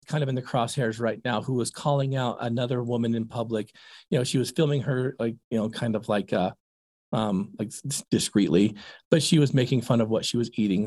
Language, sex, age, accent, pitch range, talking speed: English, male, 40-59, American, 115-170 Hz, 225 wpm